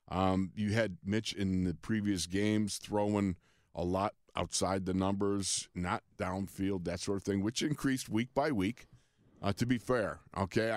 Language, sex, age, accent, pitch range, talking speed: English, male, 50-69, American, 95-120 Hz, 165 wpm